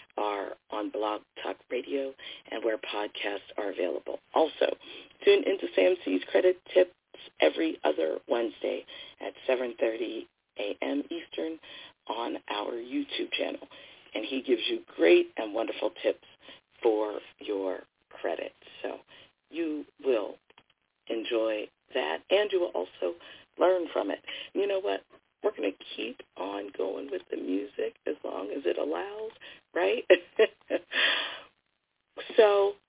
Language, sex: English, female